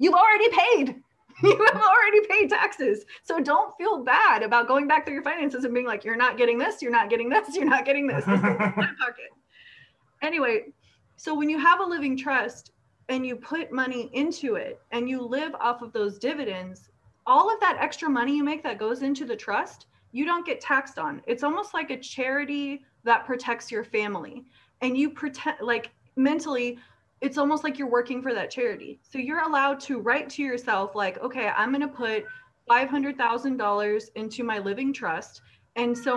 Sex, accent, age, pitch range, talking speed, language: female, American, 20-39, 245-310 Hz, 185 wpm, English